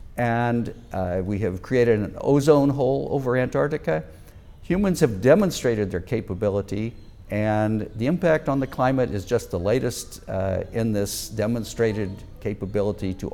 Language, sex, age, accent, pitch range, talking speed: English, male, 60-79, American, 95-125 Hz, 140 wpm